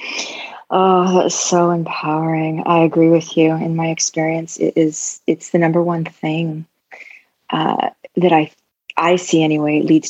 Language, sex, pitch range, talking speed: English, female, 155-185 Hz, 150 wpm